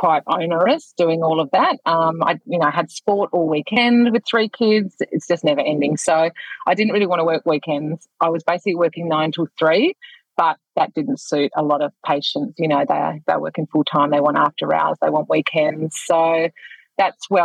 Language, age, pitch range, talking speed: English, 30-49, 160-205 Hz, 200 wpm